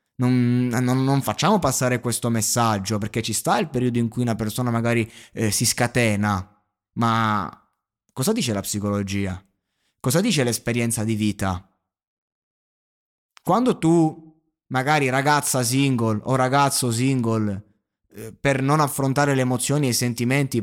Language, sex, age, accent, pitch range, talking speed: Italian, male, 20-39, native, 115-150 Hz, 135 wpm